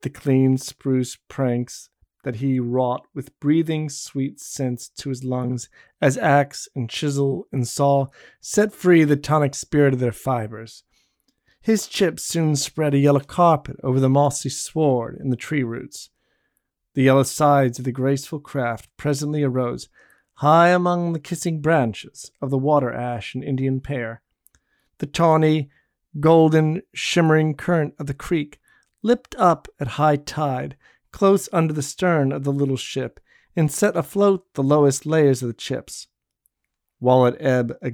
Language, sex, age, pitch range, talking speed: English, male, 40-59, 130-155 Hz, 155 wpm